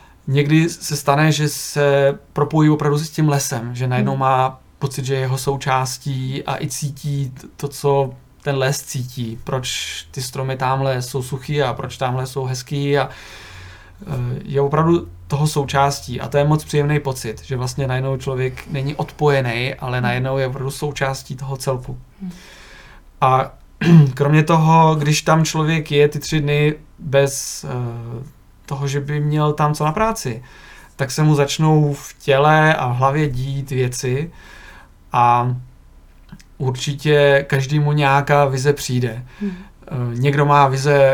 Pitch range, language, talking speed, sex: 130-150 Hz, Czech, 145 wpm, male